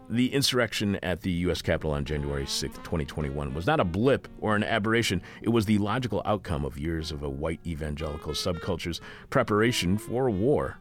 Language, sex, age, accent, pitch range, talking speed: English, male, 40-59, American, 85-115 Hz, 180 wpm